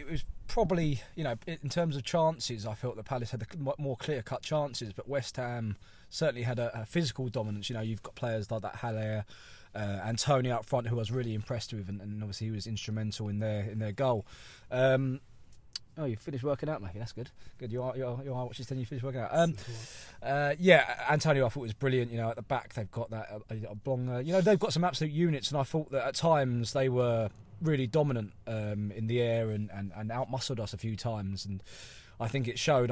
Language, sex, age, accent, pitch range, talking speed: English, male, 20-39, British, 110-130 Hz, 240 wpm